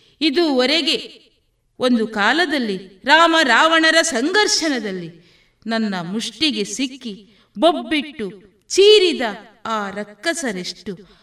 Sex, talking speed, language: female, 70 wpm, Kannada